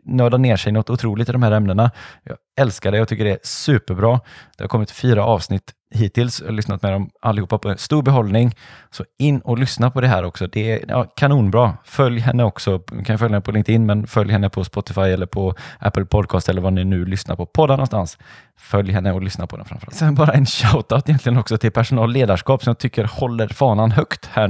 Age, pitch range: 20-39, 105-130 Hz